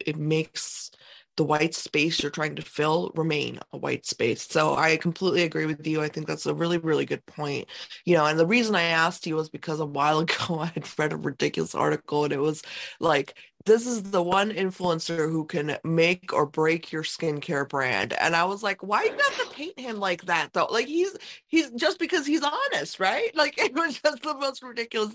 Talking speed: 215 wpm